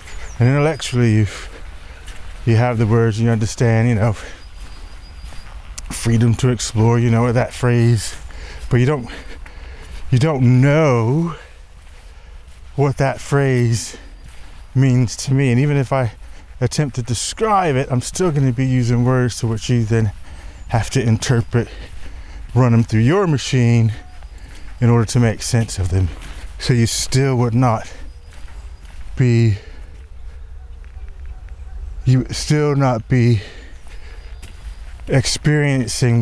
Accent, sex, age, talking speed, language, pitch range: American, male, 20-39, 125 wpm, English, 75-125 Hz